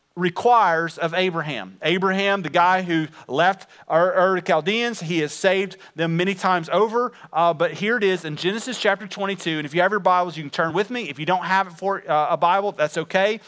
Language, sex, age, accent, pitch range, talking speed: English, male, 30-49, American, 170-220 Hz, 205 wpm